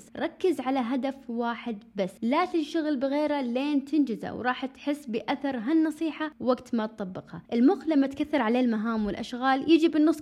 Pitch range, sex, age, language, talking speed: 225-295 Hz, female, 20-39, Arabic, 145 wpm